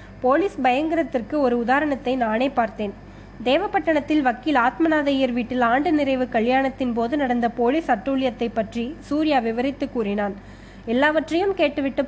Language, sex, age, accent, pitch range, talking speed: Tamil, female, 20-39, native, 235-290 Hz, 115 wpm